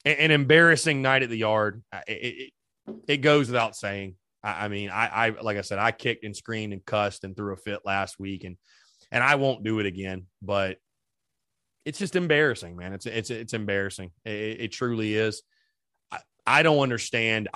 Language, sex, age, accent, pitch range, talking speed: English, male, 30-49, American, 110-160 Hz, 190 wpm